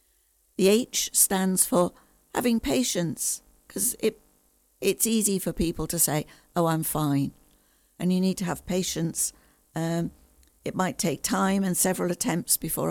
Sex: female